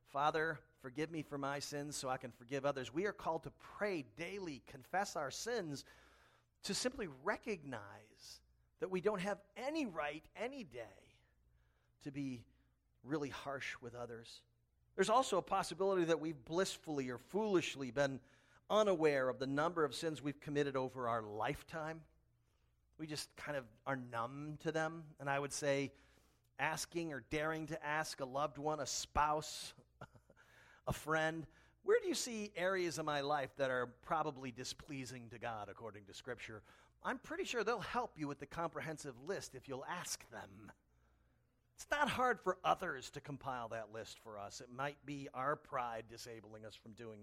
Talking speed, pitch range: 170 wpm, 120-160 Hz